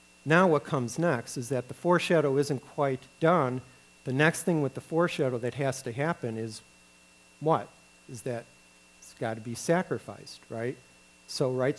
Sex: male